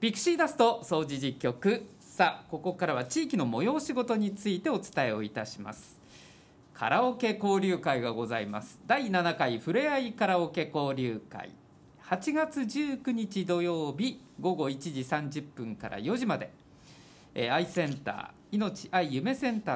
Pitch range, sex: 145-245 Hz, male